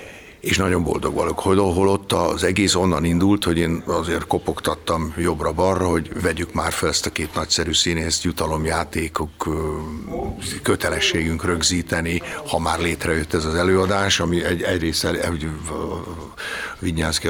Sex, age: male, 60-79